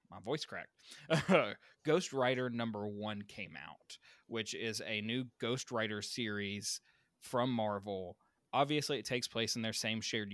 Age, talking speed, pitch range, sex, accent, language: 20-39, 145 wpm, 105-125 Hz, male, American, English